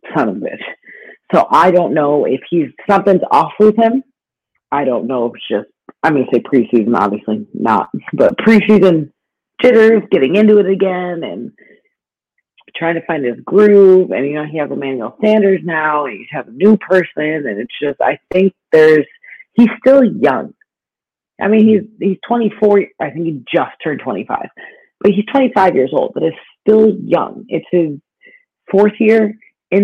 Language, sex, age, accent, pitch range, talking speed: English, female, 40-59, American, 145-210 Hz, 175 wpm